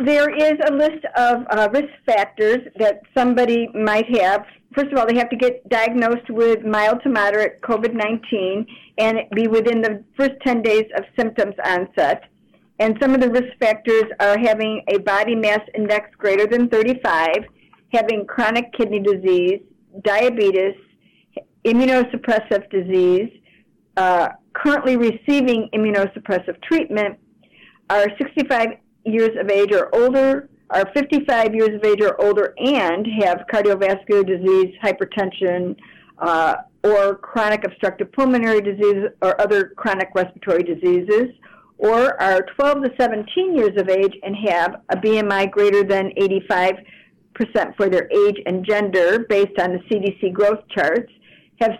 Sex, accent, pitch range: female, American, 200-240 Hz